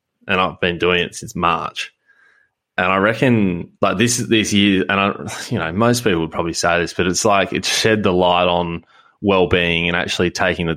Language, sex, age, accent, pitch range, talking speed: English, male, 20-39, Australian, 85-100 Hz, 210 wpm